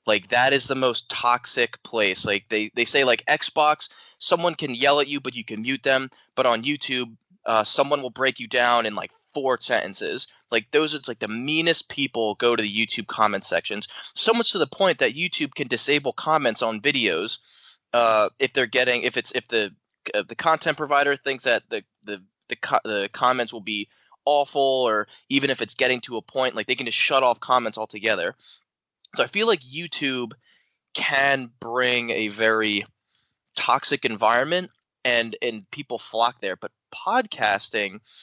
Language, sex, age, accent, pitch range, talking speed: English, male, 20-39, American, 115-145 Hz, 190 wpm